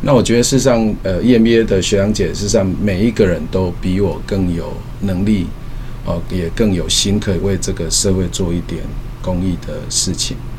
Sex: male